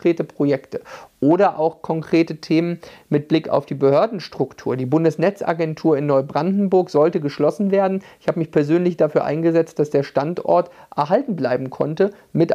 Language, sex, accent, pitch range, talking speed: German, male, German, 150-190 Hz, 150 wpm